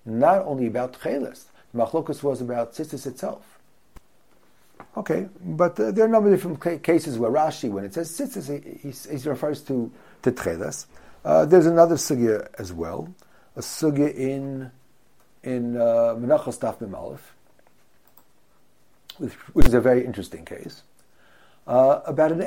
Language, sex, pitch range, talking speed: English, male, 125-190 Hz, 145 wpm